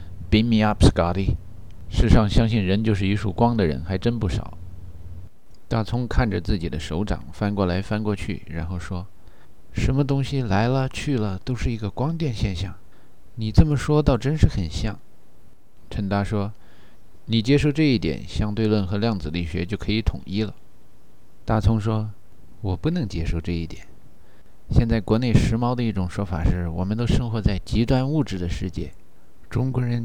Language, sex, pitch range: Chinese, male, 95-120 Hz